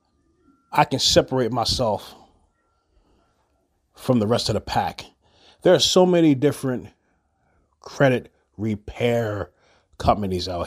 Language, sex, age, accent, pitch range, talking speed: English, male, 30-49, American, 75-125 Hz, 105 wpm